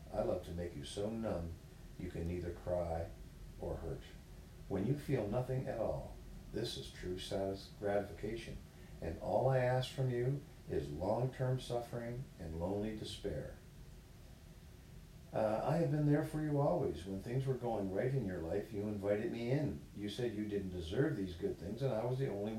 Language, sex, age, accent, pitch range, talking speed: English, male, 50-69, American, 95-130 Hz, 180 wpm